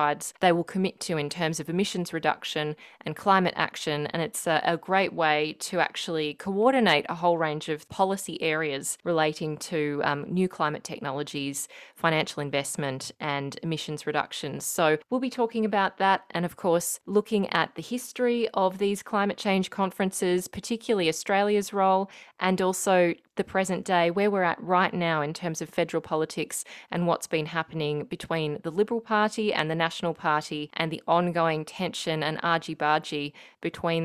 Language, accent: English, Australian